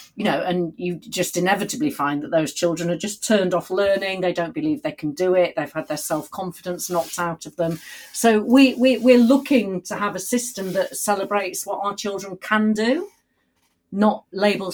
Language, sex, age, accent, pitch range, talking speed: English, female, 40-59, British, 160-195 Hz, 200 wpm